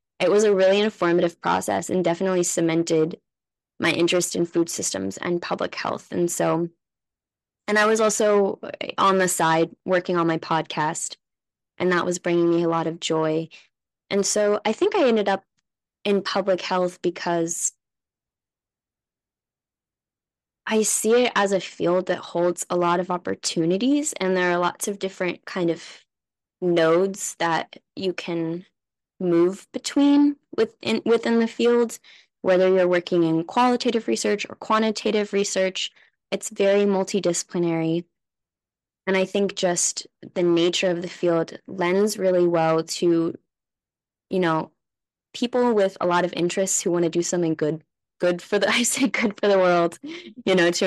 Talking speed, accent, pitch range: 155 wpm, American, 170-200 Hz